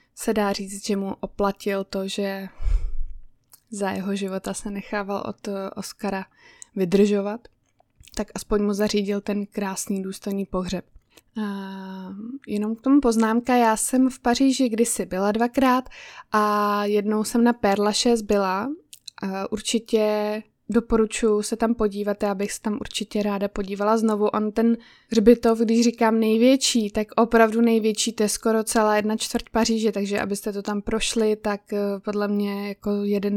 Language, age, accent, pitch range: Czech, 20-39, native, 205-230 Hz